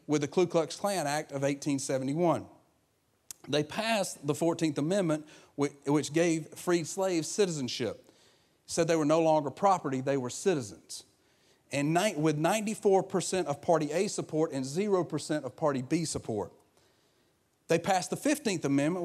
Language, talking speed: English, 140 wpm